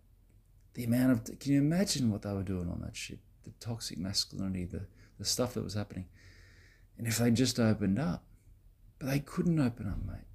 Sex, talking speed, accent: male, 195 wpm, Australian